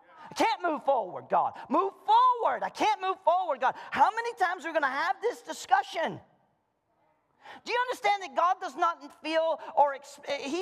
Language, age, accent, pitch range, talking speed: English, 40-59, American, 240-400 Hz, 180 wpm